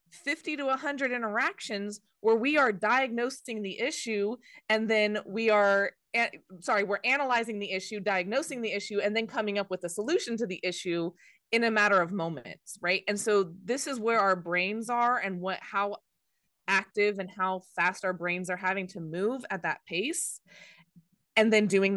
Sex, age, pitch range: female, 20-39, 175-225 Hz